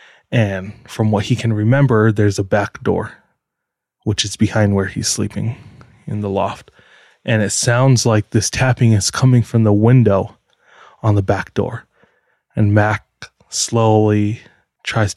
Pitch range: 105-125 Hz